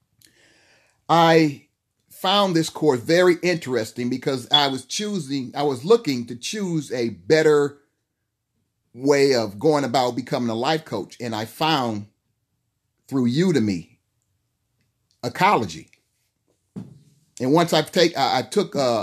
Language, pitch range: English, 120-155 Hz